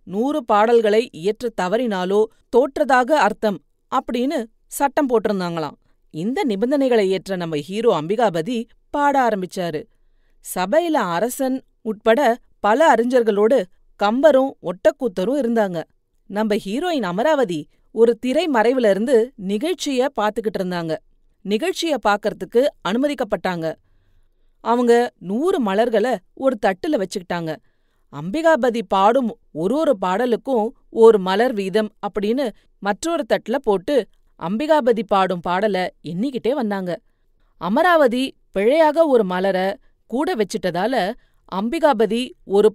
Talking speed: 95 wpm